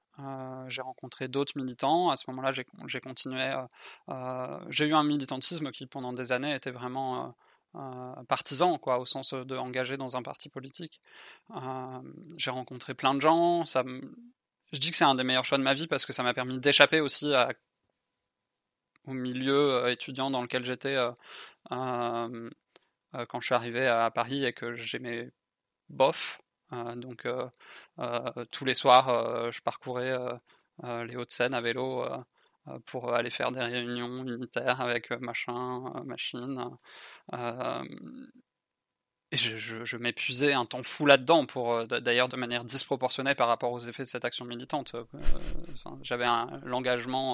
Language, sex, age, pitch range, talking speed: French, male, 20-39, 120-135 Hz, 165 wpm